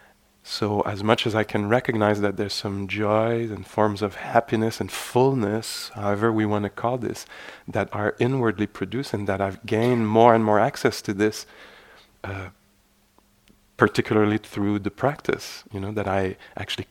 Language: English